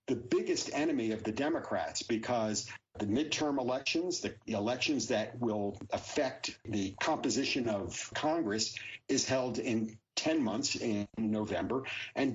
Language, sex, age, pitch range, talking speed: English, male, 50-69, 110-140 Hz, 130 wpm